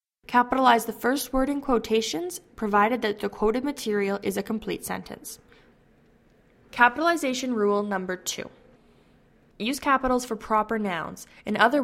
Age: 10-29